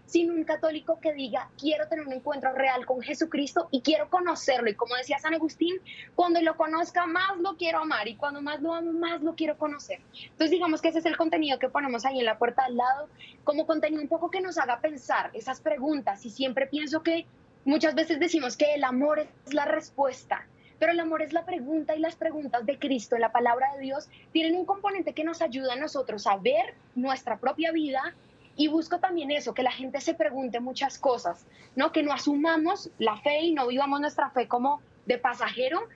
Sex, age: female, 10-29